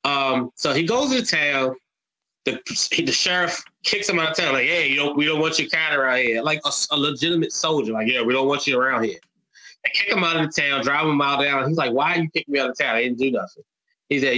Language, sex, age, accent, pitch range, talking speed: English, male, 20-39, American, 125-165 Hz, 280 wpm